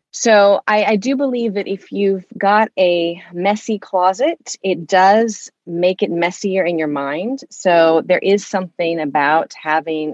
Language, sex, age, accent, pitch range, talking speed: English, female, 30-49, American, 160-205 Hz, 155 wpm